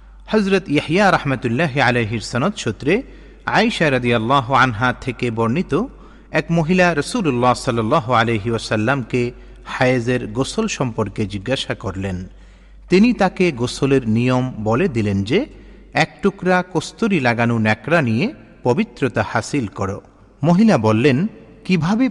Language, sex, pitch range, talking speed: Bengali, male, 110-165 Hz, 105 wpm